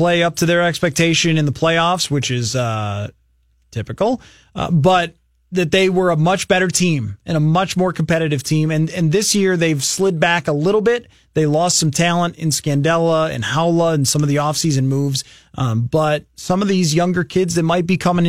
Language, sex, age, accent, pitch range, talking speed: English, male, 30-49, American, 150-185 Hz, 205 wpm